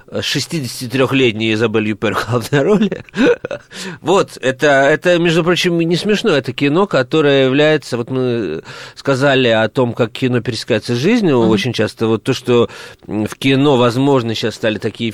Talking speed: 145 wpm